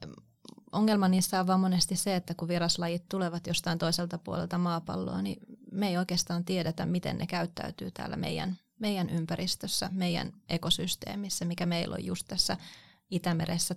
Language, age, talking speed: Finnish, 20-39, 150 wpm